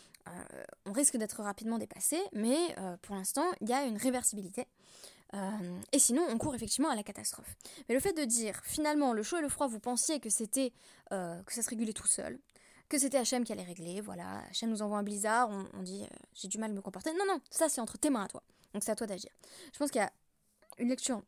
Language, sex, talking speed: French, female, 250 wpm